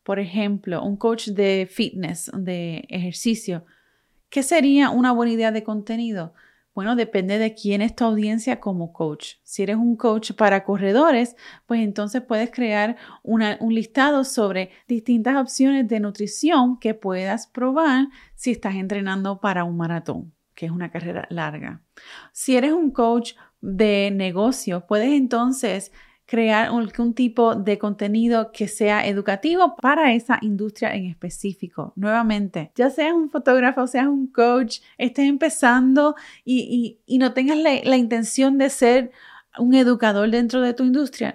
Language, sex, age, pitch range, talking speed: Spanish, female, 30-49, 200-255 Hz, 145 wpm